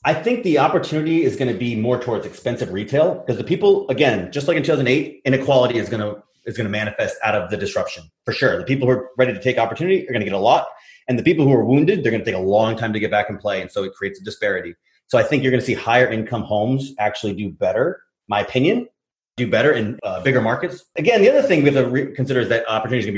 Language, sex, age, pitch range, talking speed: English, male, 30-49, 110-145 Hz, 270 wpm